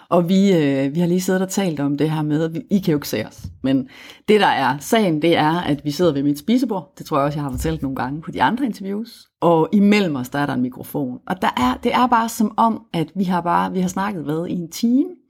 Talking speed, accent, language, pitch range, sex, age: 285 wpm, native, Danish, 155-225 Hz, female, 30-49